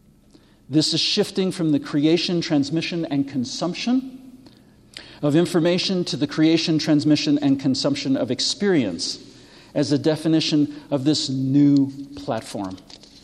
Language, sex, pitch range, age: English, male, 135-170 Hz, 50-69